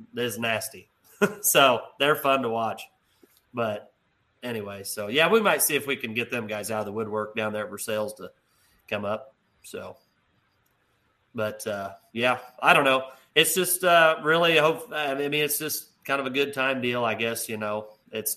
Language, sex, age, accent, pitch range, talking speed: English, male, 30-49, American, 110-145 Hz, 195 wpm